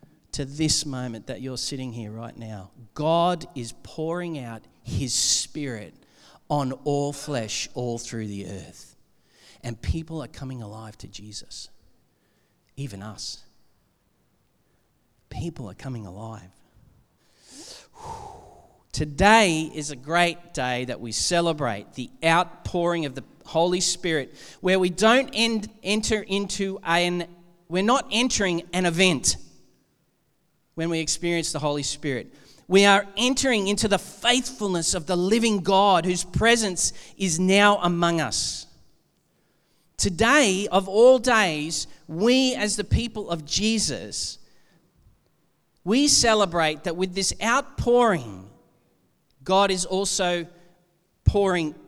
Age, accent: 40-59, Australian